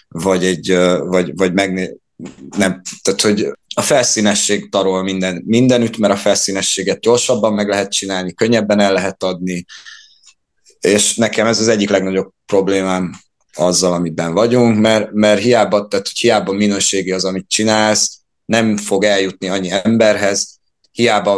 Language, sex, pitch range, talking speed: Hungarian, male, 95-110 Hz, 140 wpm